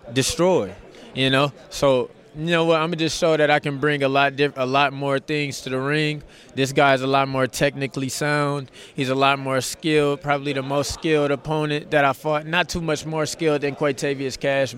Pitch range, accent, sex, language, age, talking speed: 145-180 Hz, American, male, English, 20-39, 220 wpm